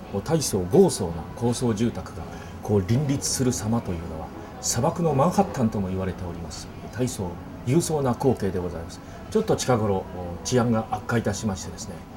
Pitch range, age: 90-125 Hz, 30-49